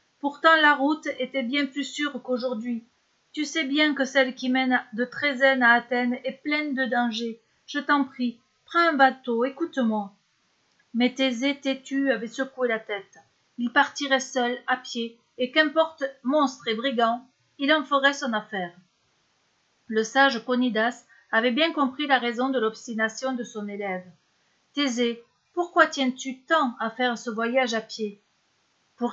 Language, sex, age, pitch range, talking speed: French, female, 40-59, 235-285 Hz, 155 wpm